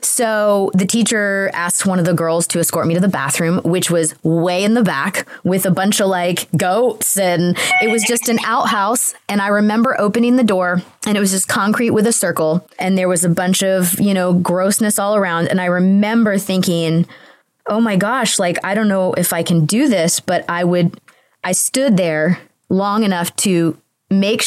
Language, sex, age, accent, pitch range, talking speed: English, female, 20-39, American, 170-215 Hz, 205 wpm